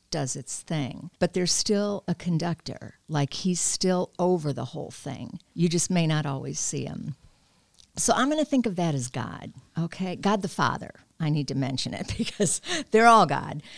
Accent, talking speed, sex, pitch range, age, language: American, 190 wpm, female, 140-200 Hz, 50-69, English